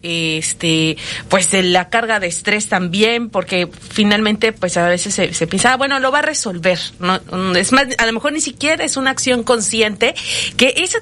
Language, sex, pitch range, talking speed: Spanish, female, 195-245 Hz, 190 wpm